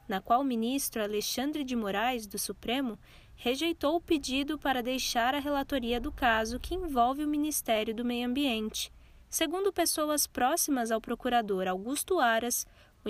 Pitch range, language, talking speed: 225-290 Hz, Portuguese, 150 wpm